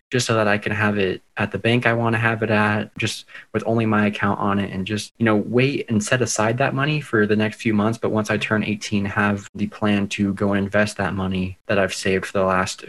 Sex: male